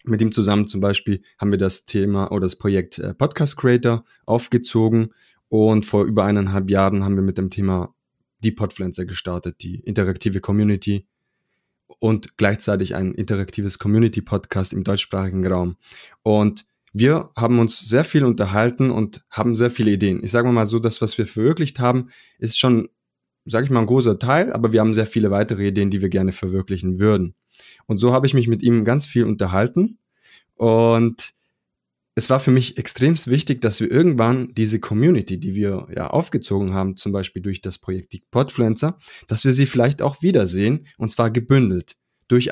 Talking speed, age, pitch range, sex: 175 wpm, 20-39, 100-125 Hz, male